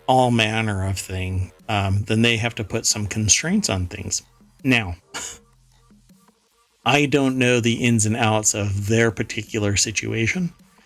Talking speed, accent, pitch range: 145 wpm, American, 100-125 Hz